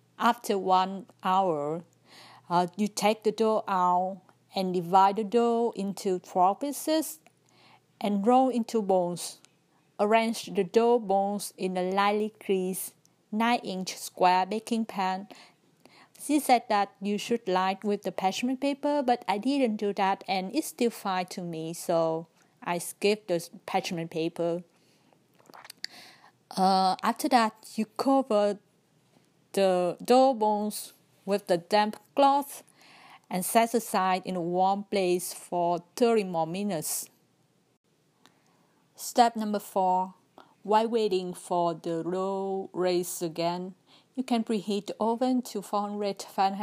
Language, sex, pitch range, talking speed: Vietnamese, female, 180-225 Hz, 125 wpm